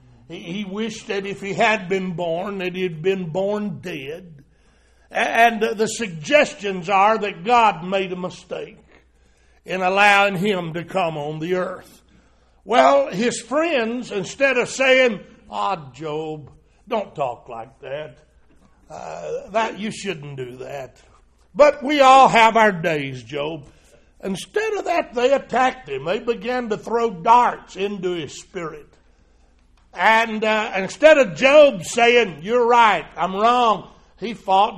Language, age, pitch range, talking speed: English, 60-79, 160-245 Hz, 140 wpm